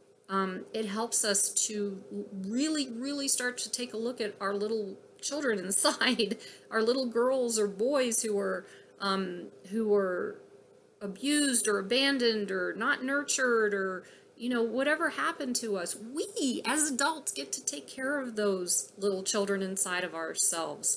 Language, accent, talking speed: English, American, 150 wpm